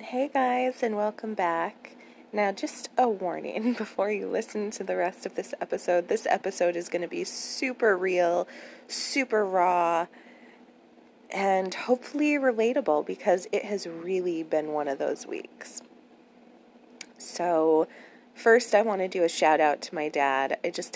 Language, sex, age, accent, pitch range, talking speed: English, female, 20-39, American, 160-210 Hz, 155 wpm